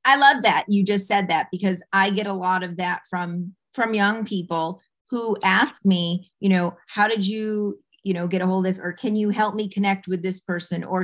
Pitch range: 185-215 Hz